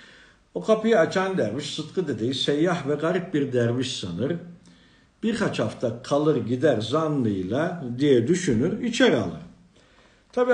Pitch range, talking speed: 120-180 Hz, 125 wpm